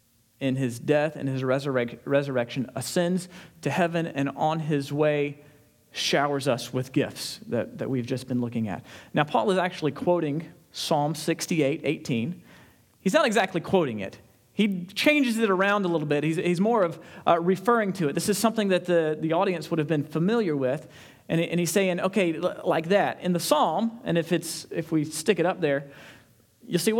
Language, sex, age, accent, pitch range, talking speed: English, male, 40-59, American, 145-190 Hz, 195 wpm